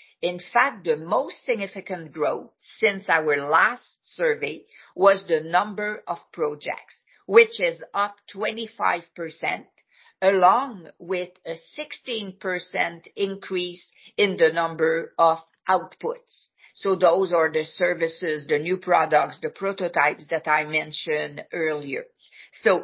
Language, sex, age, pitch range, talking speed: English, female, 50-69, 165-220 Hz, 120 wpm